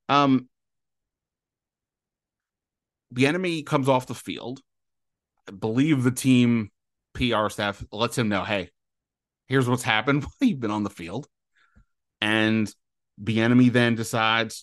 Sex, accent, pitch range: male, American, 105-140 Hz